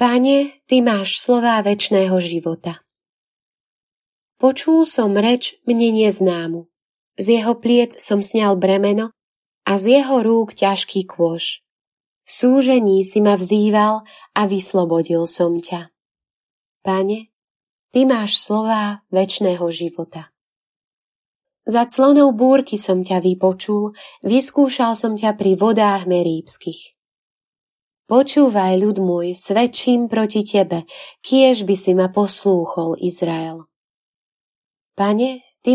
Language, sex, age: Slovak, female, 20-39